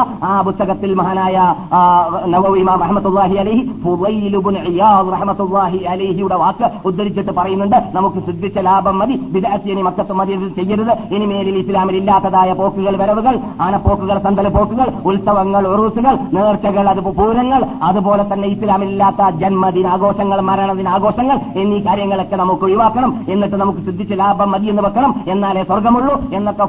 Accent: native